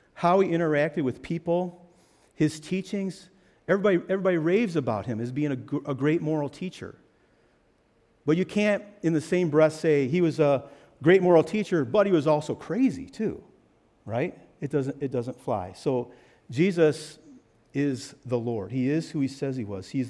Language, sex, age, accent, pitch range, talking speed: English, male, 50-69, American, 120-165 Hz, 165 wpm